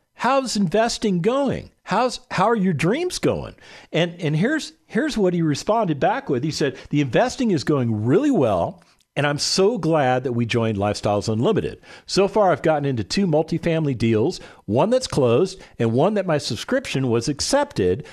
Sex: male